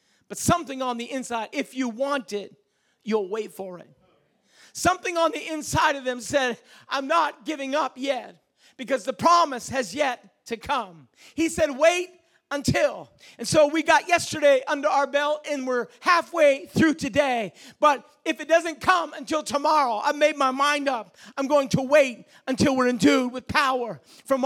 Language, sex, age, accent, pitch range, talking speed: English, male, 40-59, American, 265-330 Hz, 175 wpm